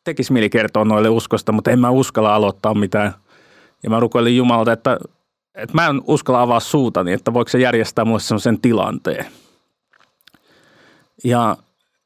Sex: male